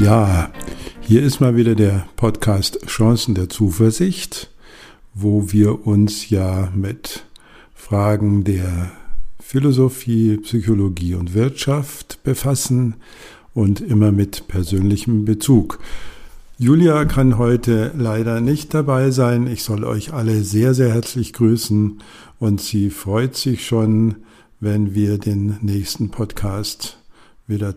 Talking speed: 115 wpm